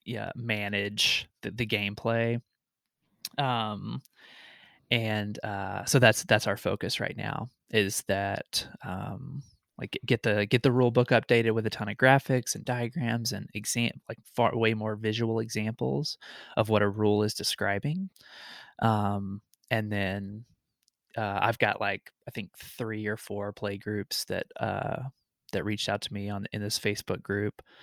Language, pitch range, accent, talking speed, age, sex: English, 105-125 Hz, American, 155 wpm, 20-39, male